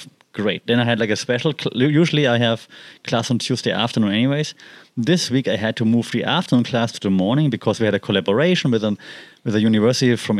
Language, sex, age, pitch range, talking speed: English, male, 30-49, 115-155 Hz, 215 wpm